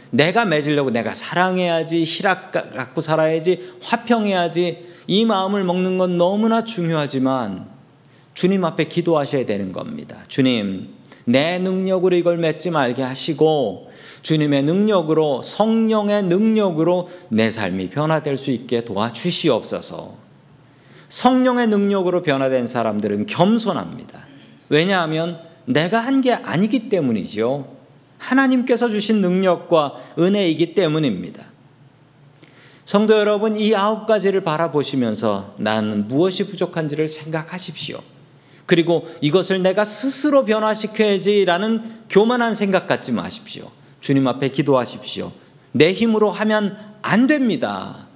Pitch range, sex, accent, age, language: 140-205 Hz, male, native, 40-59, Korean